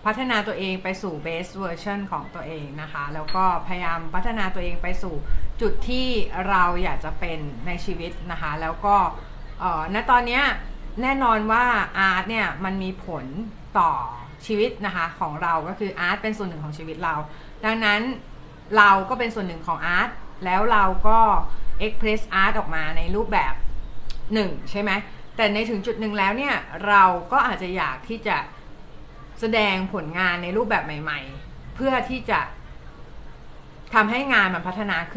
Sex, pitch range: female, 170-215 Hz